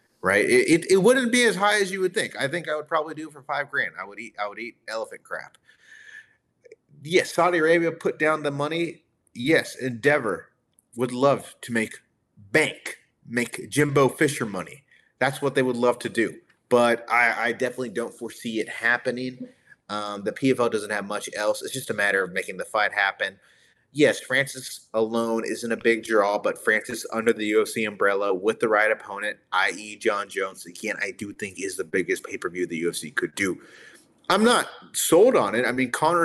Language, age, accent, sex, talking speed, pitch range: English, 30-49, American, male, 195 wpm, 115-170 Hz